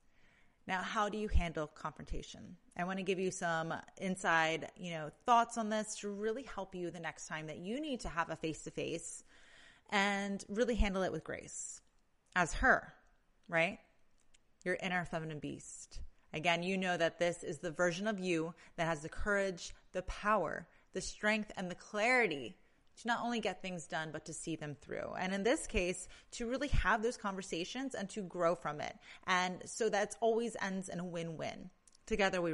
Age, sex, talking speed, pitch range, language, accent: 30-49, female, 190 wpm, 165-215 Hz, English, American